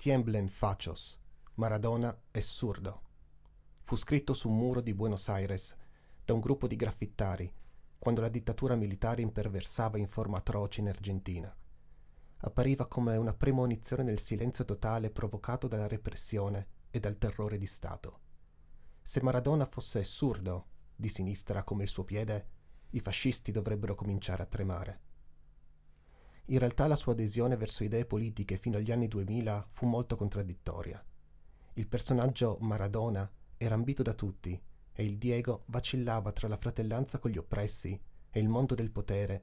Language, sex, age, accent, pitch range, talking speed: Italian, male, 30-49, native, 90-115 Hz, 145 wpm